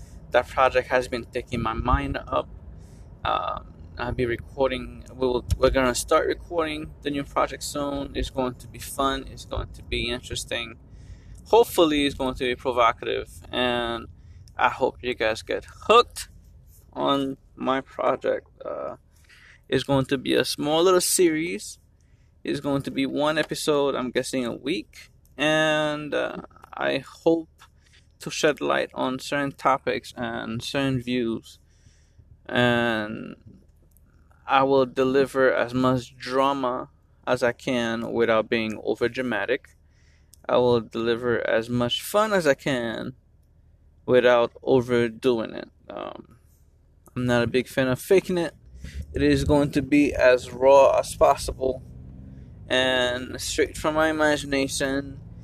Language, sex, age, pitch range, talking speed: English, male, 20-39, 100-135 Hz, 140 wpm